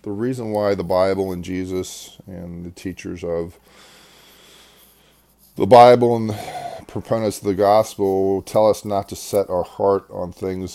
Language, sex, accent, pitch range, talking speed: English, male, American, 90-105 Hz, 150 wpm